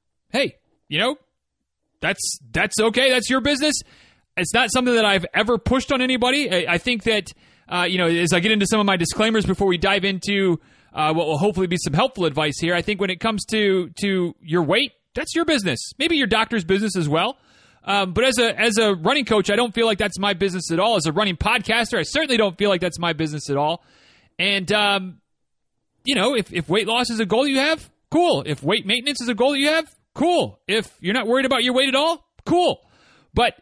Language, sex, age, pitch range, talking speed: English, male, 30-49, 180-240 Hz, 230 wpm